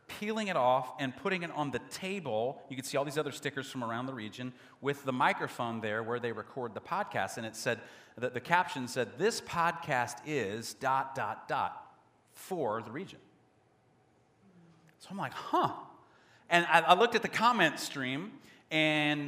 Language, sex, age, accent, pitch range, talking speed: English, male, 40-59, American, 135-200 Hz, 180 wpm